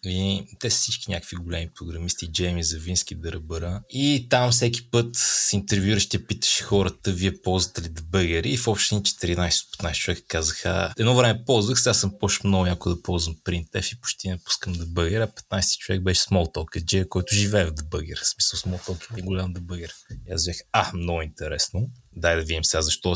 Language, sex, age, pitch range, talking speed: Bulgarian, male, 20-39, 90-105 Hz, 180 wpm